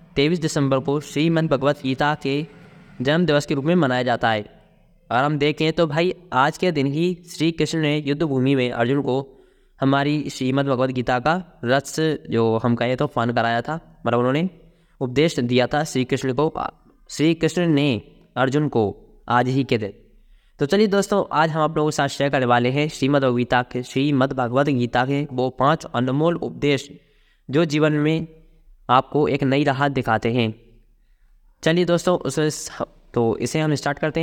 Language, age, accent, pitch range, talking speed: Hindi, 10-29, native, 125-155 Hz, 175 wpm